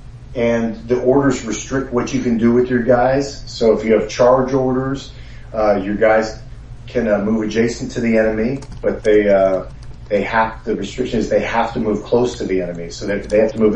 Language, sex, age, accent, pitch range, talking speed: English, male, 40-59, American, 100-120 Hz, 210 wpm